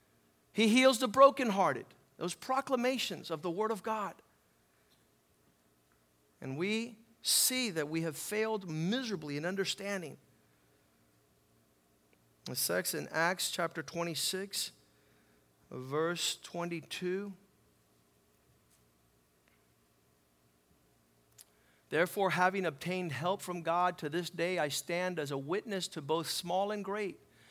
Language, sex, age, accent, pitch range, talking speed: English, male, 50-69, American, 125-190 Hz, 105 wpm